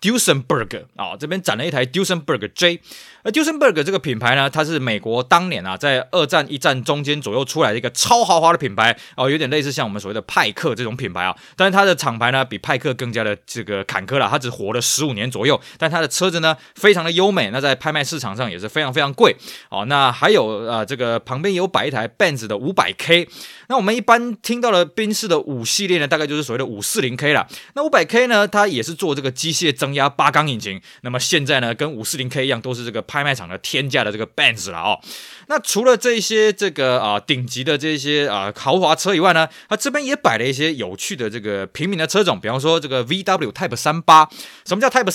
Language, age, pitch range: Chinese, 20-39, 130-185 Hz